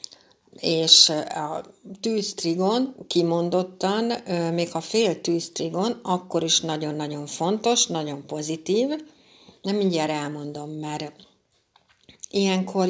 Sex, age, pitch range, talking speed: female, 60-79, 155-190 Hz, 90 wpm